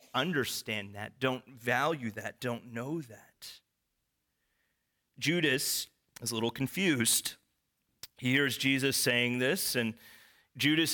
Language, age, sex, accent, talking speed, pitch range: English, 30-49, male, American, 110 wpm, 115-150 Hz